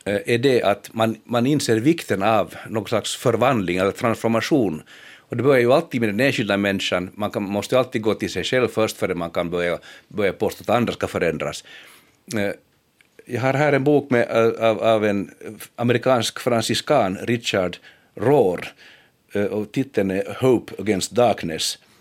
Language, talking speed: Finnish, 160 wpm